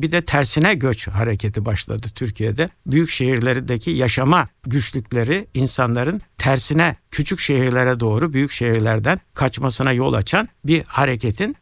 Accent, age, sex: native, 60-79, male